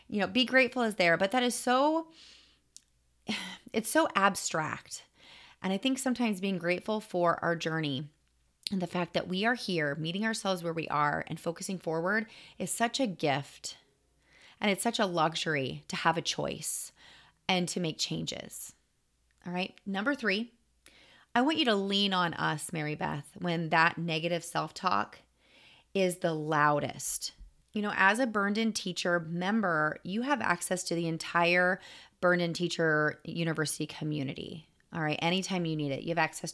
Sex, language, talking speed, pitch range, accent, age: female, English, 170 wpm, 160-205 Hz, American, 30-49